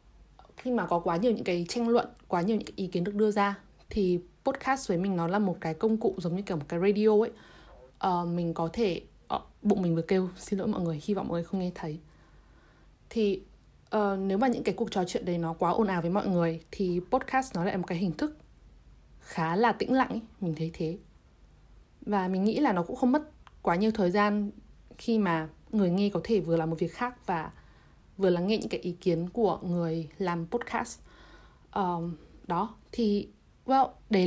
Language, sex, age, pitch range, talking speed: Vietnamese, female, 20-39, 170-220 Hz, 220 wpm